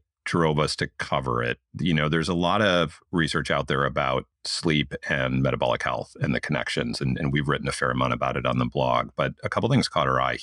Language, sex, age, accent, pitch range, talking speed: English, male, 40-59, American, 70-80 Hz, 235 wpm